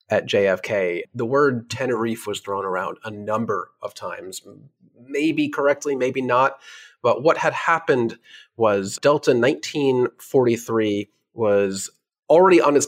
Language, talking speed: English, 125 wpm